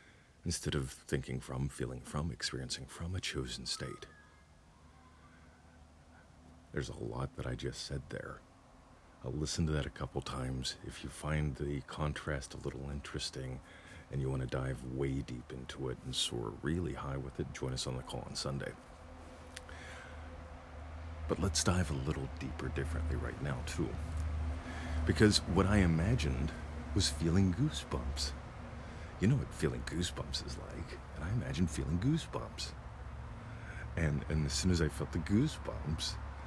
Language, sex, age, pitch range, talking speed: English, male, 40-59, 70-85 Hz, 155 wpm